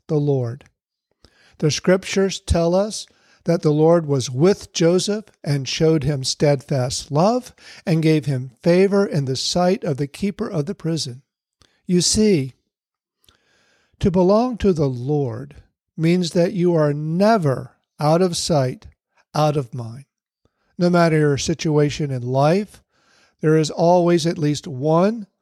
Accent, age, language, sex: American, 60-79, English, male